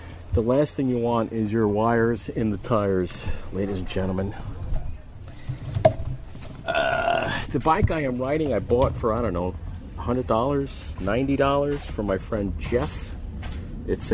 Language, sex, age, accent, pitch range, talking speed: English, male, 40-59, American, 90-120 Hz, 140 wpm